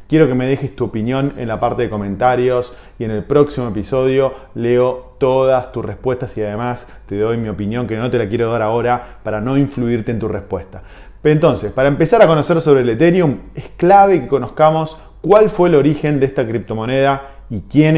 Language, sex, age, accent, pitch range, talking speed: Spanish, male, 20-39, Argentinian, 110-140 Hz, 200 wpm